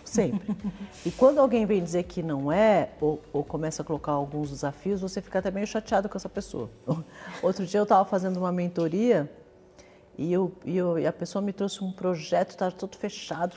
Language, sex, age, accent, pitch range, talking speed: Portuguese, female, 50-69, Brazilian, 160-240 Hz, 200 wpm